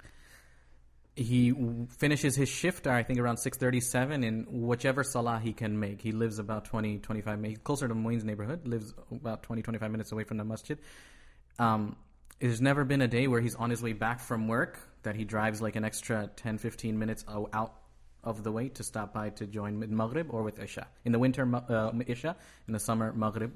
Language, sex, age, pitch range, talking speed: English, male, 30-49, 105-120 Hz, 200 wpm